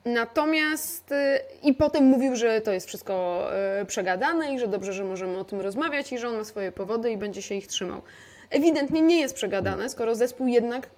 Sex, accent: female, native